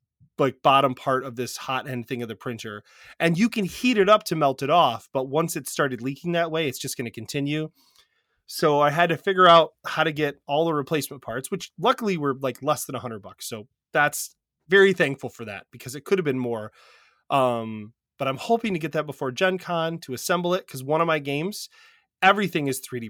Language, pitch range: English, 125-165 Hz